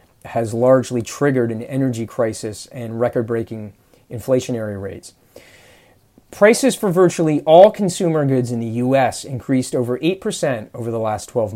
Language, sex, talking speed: English, male, 135 wpm